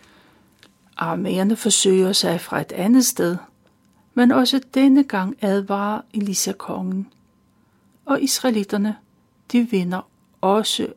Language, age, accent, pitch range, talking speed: Danish, 60-79, native, 195-245 Hz, 100 wpm